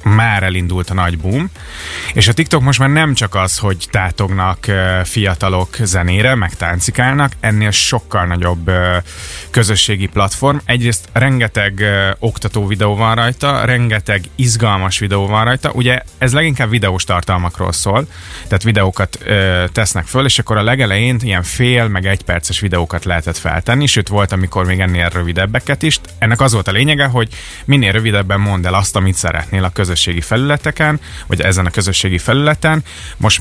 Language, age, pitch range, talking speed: Hungarian, 30-49, 90-115 Hz, 155 wpm